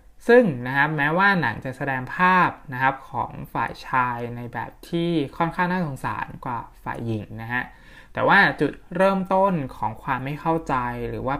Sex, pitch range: male, 120-155 Hz